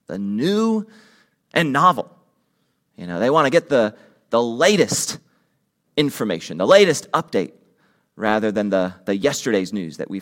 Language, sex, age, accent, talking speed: English, male, 30-49, American, 145 wpm